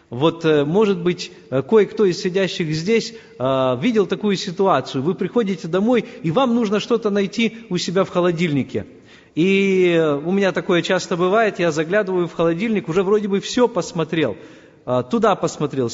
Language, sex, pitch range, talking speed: Russian, male, 155-205 Hz, 145 wpm